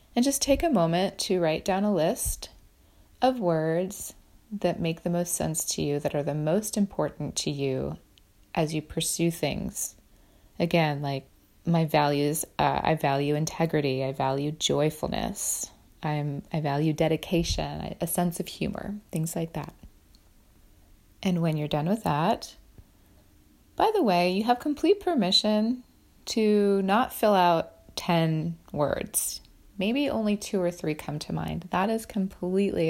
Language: English